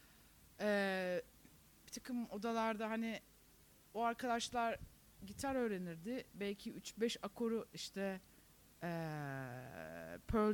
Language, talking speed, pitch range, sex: Turkish, 80 wpm, 185-240 Hz, female